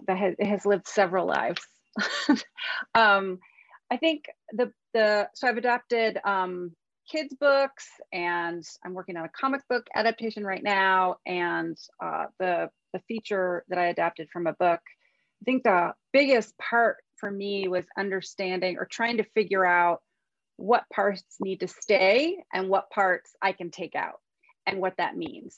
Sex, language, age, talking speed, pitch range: female, English, 30-49, 155 wpm, 180-235 Hz